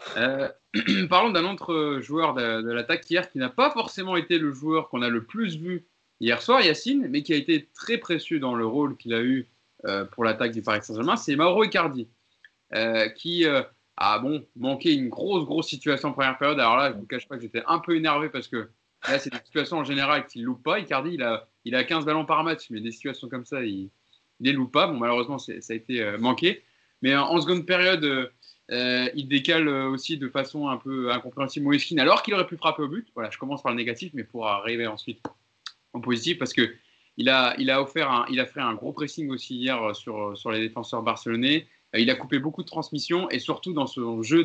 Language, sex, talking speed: French, male, 235 wpm